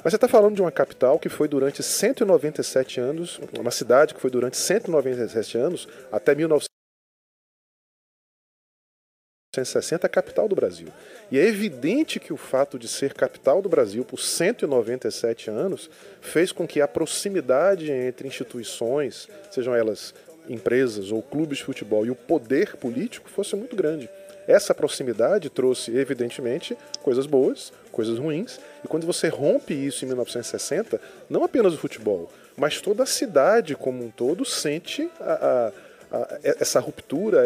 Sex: male